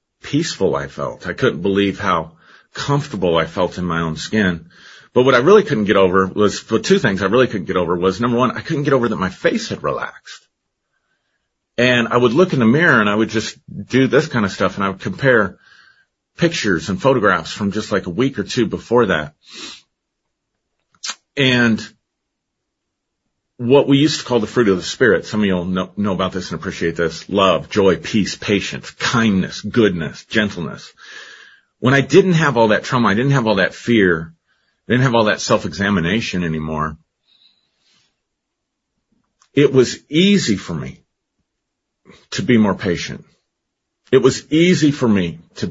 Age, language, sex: 40-59, English, male